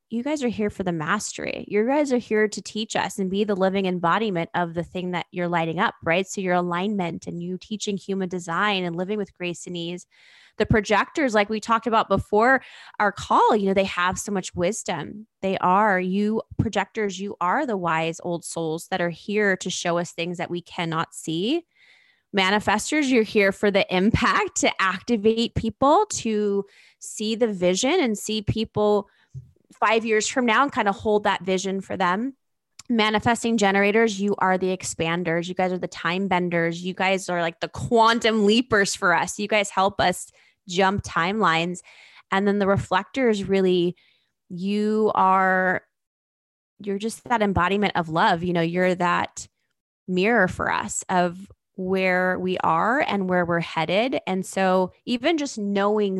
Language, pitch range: English, 180-215 Hz